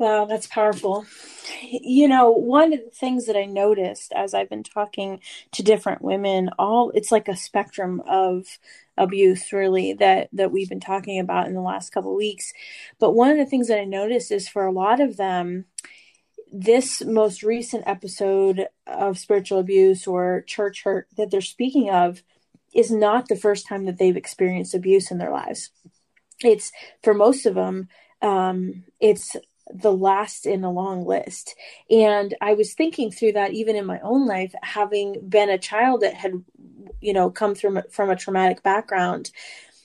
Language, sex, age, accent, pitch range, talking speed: English, female, 30-49, American, 190-225 Hz, 175 wpm